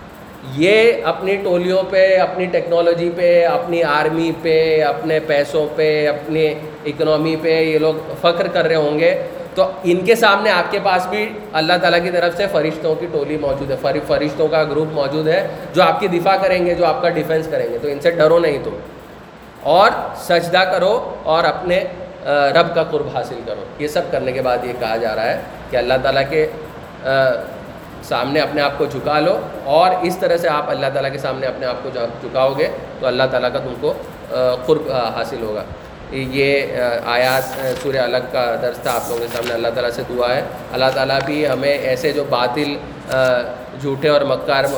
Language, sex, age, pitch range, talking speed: Urdu, male, 20-39, 135-170 Hz, 180 wpm